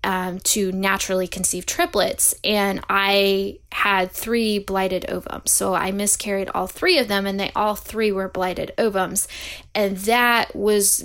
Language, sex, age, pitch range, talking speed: English, female, 10-29, 185-205 Hz, 150 wpm